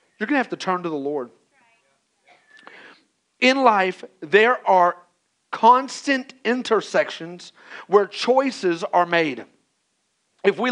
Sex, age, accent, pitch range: male, 40-59, American, 185-240 Hz